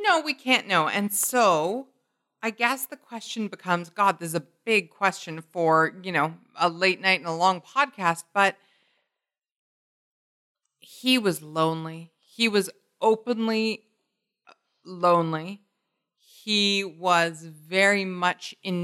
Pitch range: 175-210 Hz